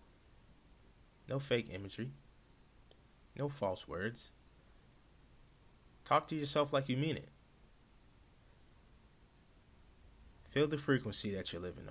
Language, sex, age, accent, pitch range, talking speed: English, male, 20-39, American, 95-130 Hz, 95 wpm